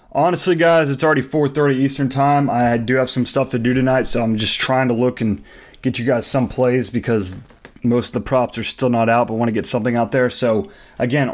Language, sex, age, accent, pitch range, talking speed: English, male, 30-49, American, 115-135 Hz, 245 wpm